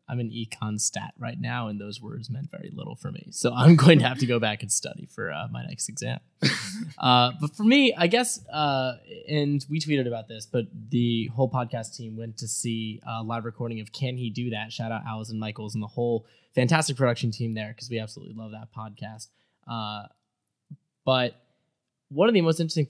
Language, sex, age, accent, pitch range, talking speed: English, male, 10-29, American, 115-135 Hz, 215 wpm